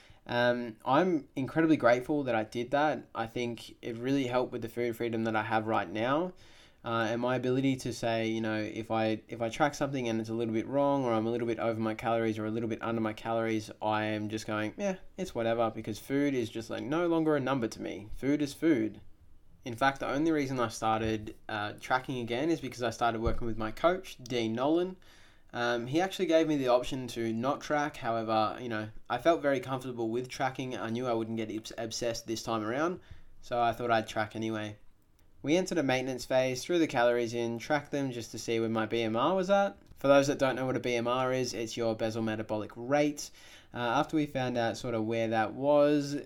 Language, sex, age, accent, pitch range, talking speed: English, male, 20-39, Australian, 110-135 Hz, 225 wpm